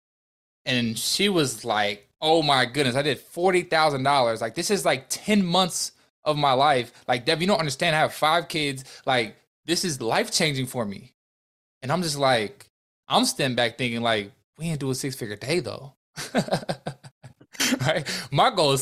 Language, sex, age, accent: English, male, 20-39, American